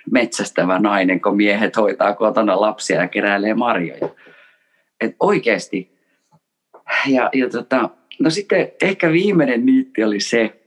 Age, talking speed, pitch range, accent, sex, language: 30-49, 125 wpm, 95-120 Hz, native, male, Finnish